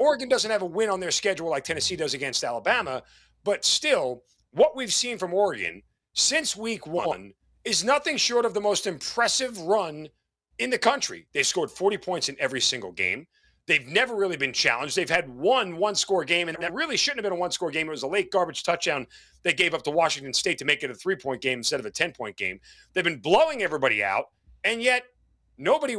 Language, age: English, 40-59